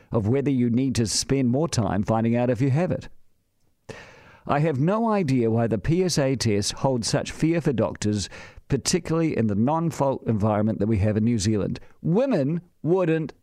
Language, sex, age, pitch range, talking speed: English, male, 50-69, 110-155 Hz, 185 wpm